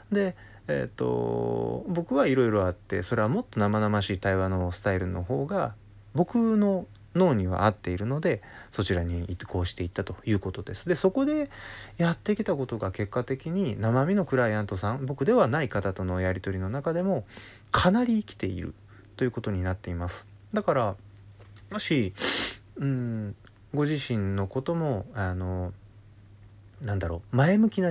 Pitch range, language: 100-140 Hz, Japanese